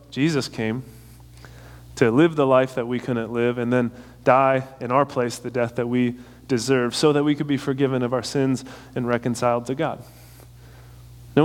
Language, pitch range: English, 120-155 Hz